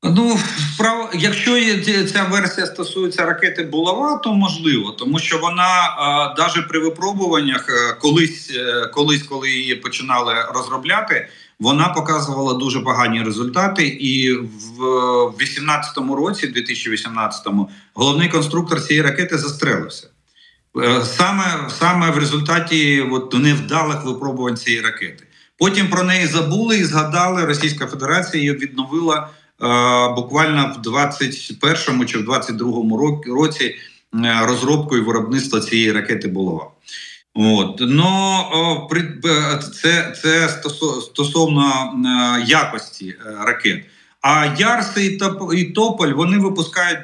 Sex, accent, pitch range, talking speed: male, native, 130-175 Hz, 95 wpm